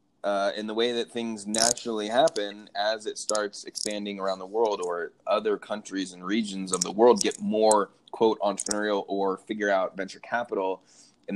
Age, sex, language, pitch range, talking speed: 20-39, male, English, 95-115 Hz, 175 wpm